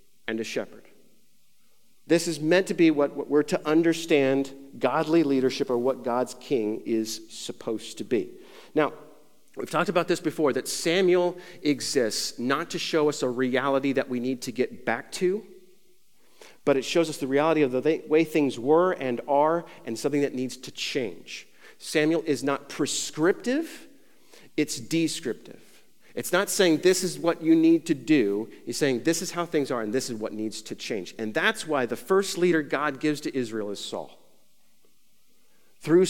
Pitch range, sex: 120-170 Hz, male